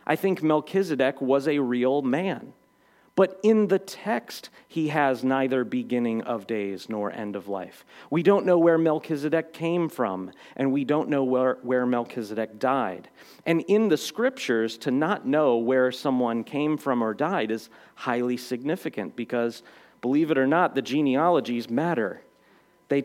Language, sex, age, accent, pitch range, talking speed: English, male, 40-59, American, 120-160 Hz, 160 wpm